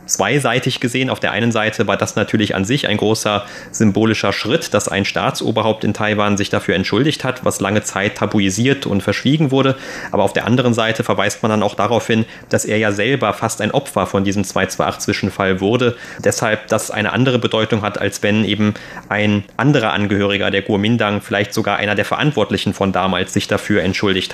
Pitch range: 105-120 Hz